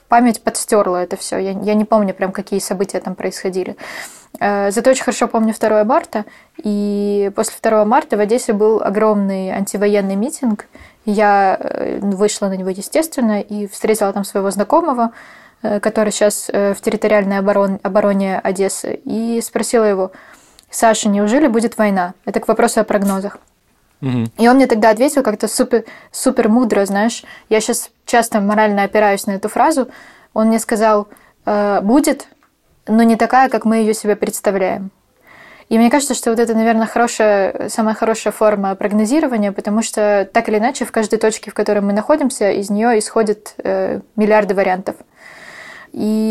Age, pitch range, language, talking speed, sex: 20-39, 200-230 Hz, Russian, 150 wpm, female